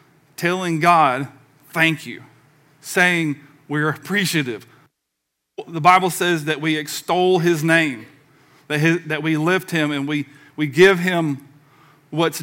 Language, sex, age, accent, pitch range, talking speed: English, male, 40-59, American, 145-170 Hz, 130 wpm